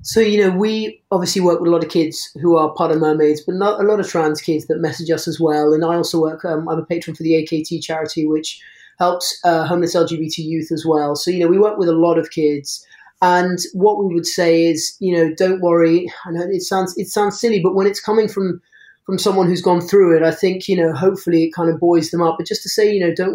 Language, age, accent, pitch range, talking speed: English, 30-49, British, 165-195 Hz, 265 wpm